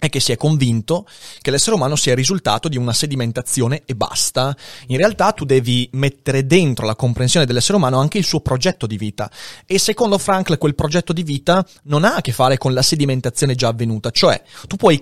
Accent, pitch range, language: native, 120-165 Hz, Italian